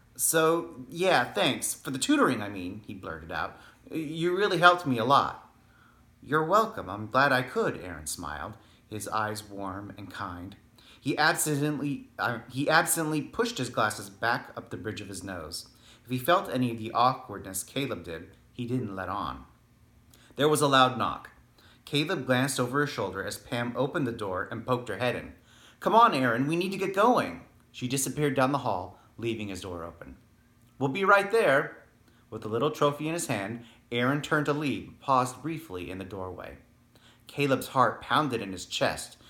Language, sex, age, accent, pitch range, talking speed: English, male, 30-49, American, 105-140 Hz, 185 wpm